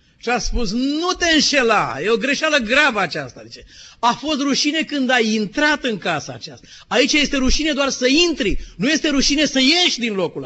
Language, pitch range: Romanian, 170-260 Hz